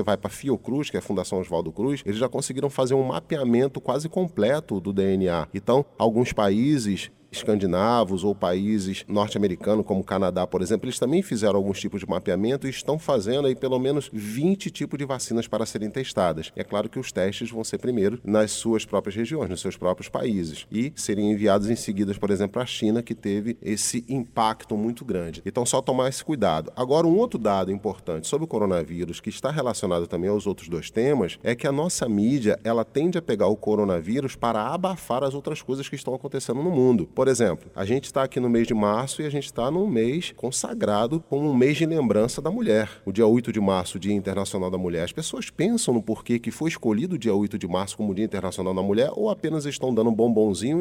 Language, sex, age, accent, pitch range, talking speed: Portuguese, male, 30-49, Brazilian, 105-135 Hz, 215 wpm